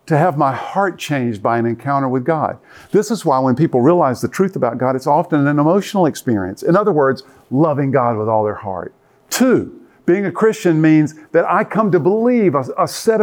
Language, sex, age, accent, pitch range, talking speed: English, male, 50-69, American, 140-195 Hz, 215 wpm